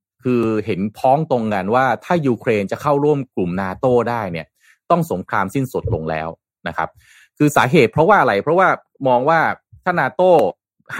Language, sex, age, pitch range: Thai, male, 30-49, 110-150 Hz